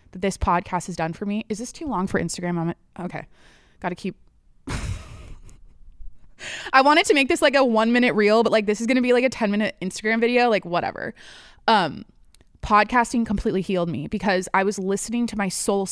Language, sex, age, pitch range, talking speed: English, female, 20-39, 180-230 Hz, 205 wpm